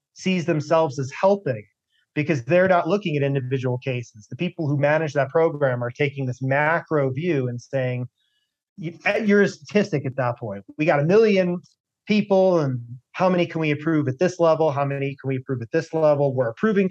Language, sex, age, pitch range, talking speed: English, male, 30-49, 135-170 Hz, 190 wpm